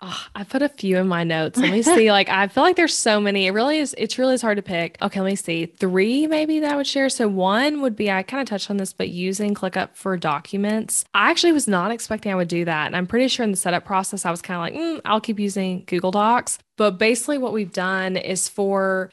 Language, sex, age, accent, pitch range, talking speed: English, female, 20-39, American, 175-215 Hz, 270 wpm